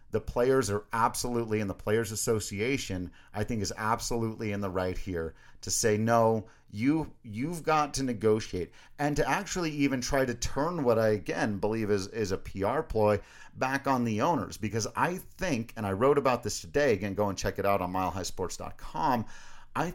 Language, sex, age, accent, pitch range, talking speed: English, male, 40-59, American, 105-135 Hz, 185 wpm